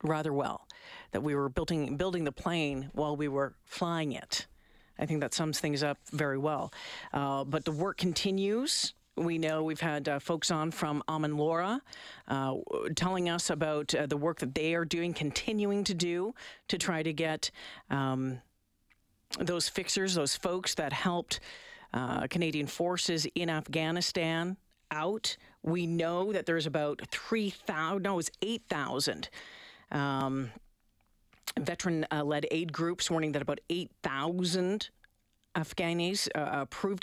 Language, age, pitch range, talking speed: English, 50-69, 150-185 Hz, 145 wpm